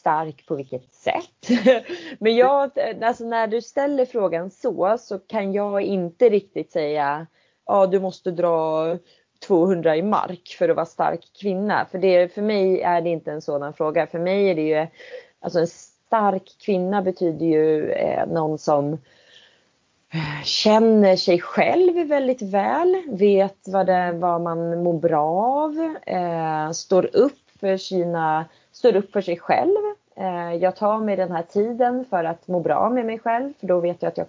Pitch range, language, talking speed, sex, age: 170-225 Hz, English, 165 wpm, female, 30-49